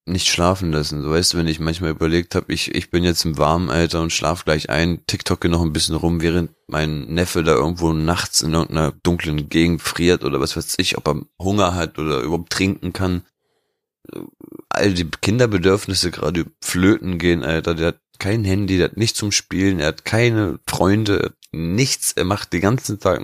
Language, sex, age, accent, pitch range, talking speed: German, male, 30-49, German, 80-95 Hz, 200 wpm